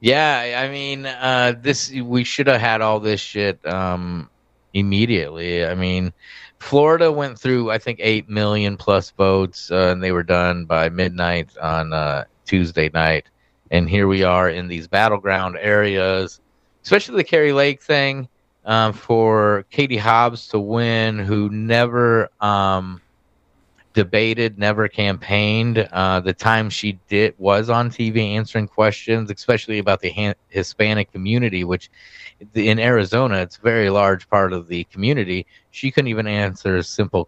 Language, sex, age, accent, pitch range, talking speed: English, male, 30-49, American, 90-110 Hz, 145 wpm